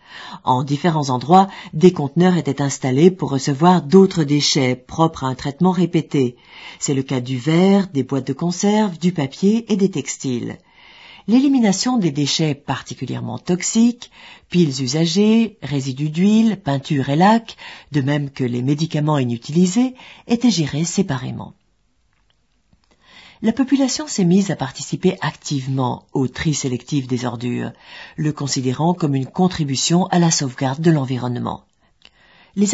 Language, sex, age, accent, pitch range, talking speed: French, female, 50-69, French, 130-180 Hz, 135 wpm